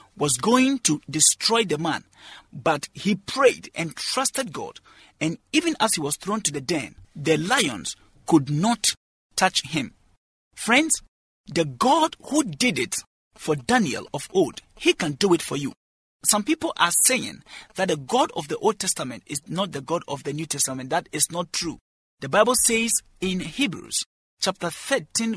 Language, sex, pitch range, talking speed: English, male, 160-250 Hz, 175 wpm